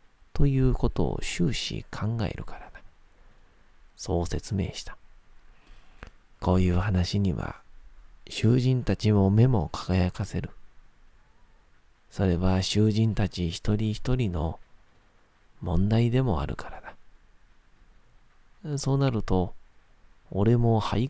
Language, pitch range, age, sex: Japanese, 85-110 Hz, 40-59, male